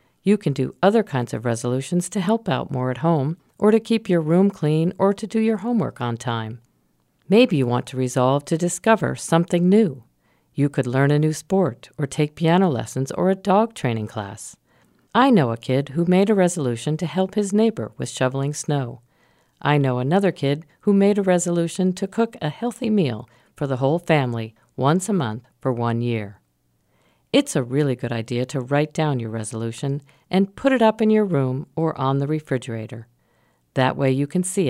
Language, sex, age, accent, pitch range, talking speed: English, female, 50-69, American, 125-190 Hz, 195 wpm